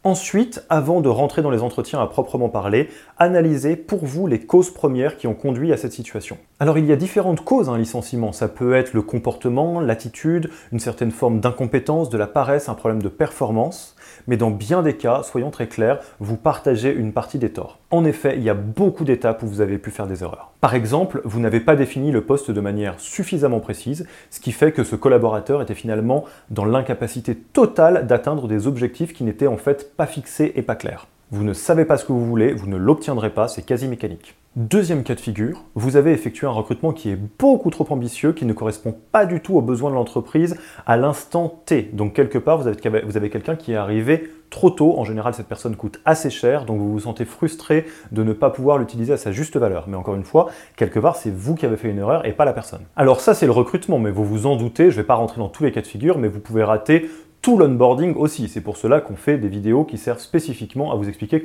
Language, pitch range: French, 110-155 Hz